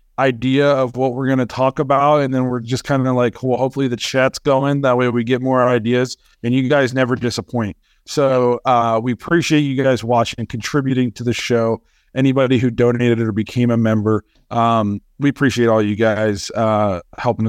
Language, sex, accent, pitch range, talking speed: English, male, American, 115-130 Hz, 200 wpm